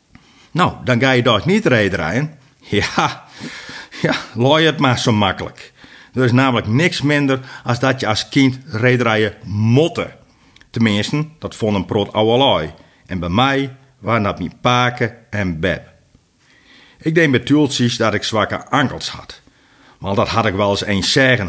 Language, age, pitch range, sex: Dutch, 50-69, 105-130 Hz, male